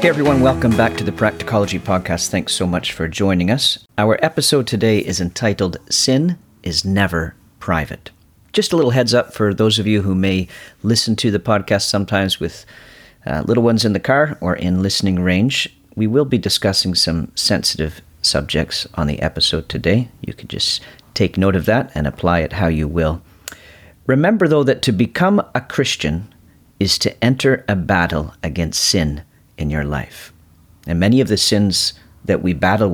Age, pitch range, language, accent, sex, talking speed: 40-59, 85-115 Hz, English, American, male, 180 wpm